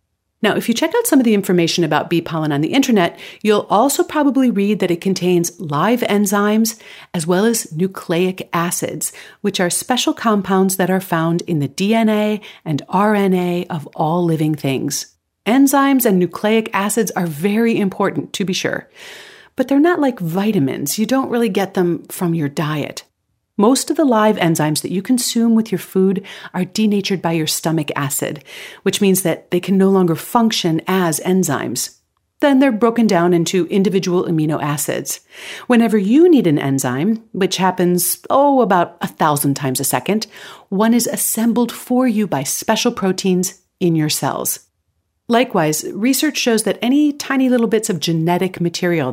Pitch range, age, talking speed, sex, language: 170-225 Hz, 40-59, 170 wpm, female, English